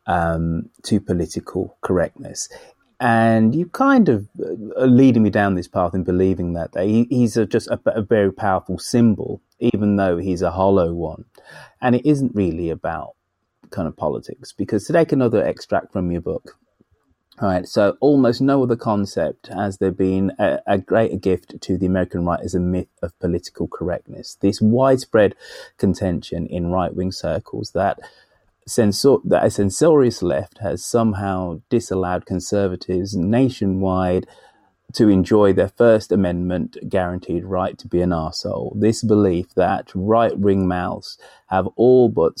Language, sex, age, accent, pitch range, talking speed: English, male, 30-49, British, 90-115 Hz, 150 wpm